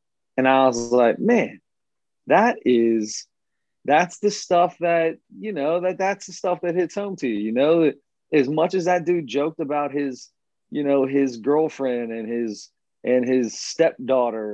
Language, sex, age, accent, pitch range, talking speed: English, male, 30-49, American, 125-155 Hz, 170 wpm